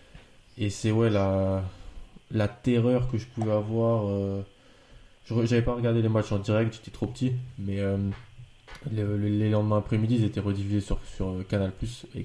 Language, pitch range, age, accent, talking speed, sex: French, 100-115 Hz, 20-39, French, 175 wpm, male